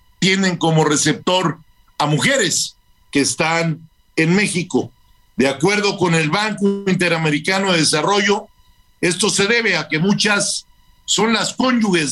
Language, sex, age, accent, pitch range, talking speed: Spanish, male, 50-69, Mexican, 150-200 Hz, 130 wpm